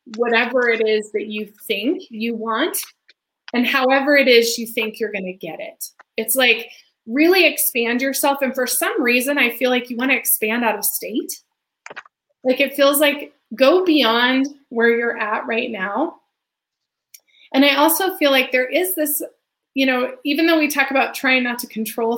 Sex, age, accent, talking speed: female, 20-39, American, 185 wpm